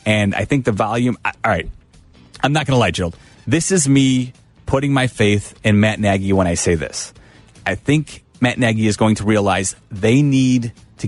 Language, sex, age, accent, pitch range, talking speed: English, male, 30-49, American, 95-120 Hz, 195 wpm